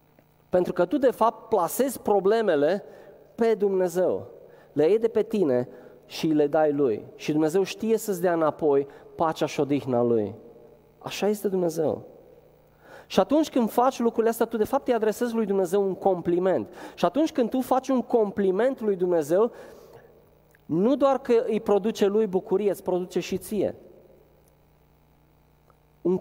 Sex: male